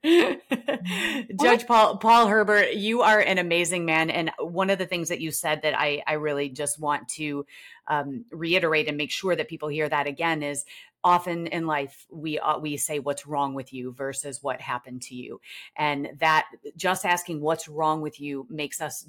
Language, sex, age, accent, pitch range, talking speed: English, female, 30-49, American, 145-165 Hz, 190 wpm